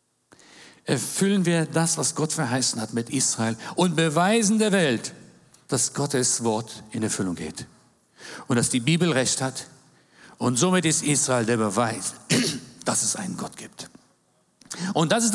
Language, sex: German, male